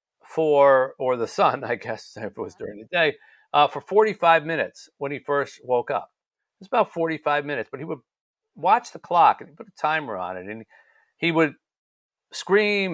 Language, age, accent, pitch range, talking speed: English, 50-69, American, 115-165 Hz, 200 wpm